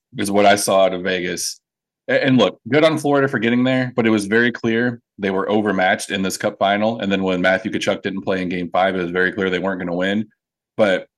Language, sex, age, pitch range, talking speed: English, male, 20-39, 95-115 Hz, 250 wpm